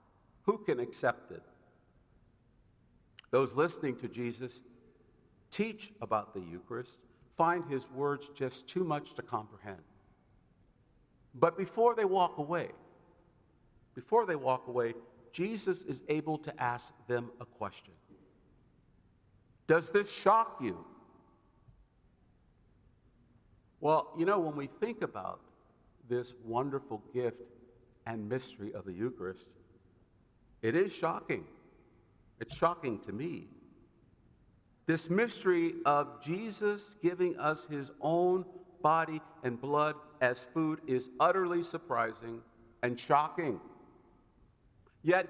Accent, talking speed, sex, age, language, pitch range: American, 110 wpm, male, 50-69, English, 120-175 Hz